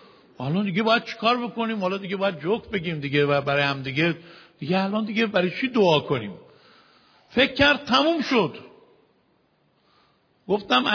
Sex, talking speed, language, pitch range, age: male, 150 wpm, Persian, 200-270 Hz, 50-69